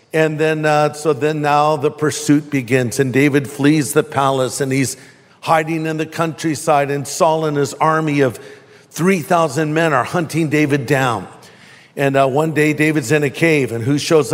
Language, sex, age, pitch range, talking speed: English, male, 50-69, 155-185 Hz, 180 wpm